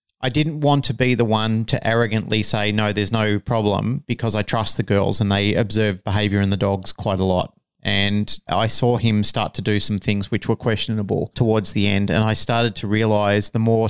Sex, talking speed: male, 220 wpm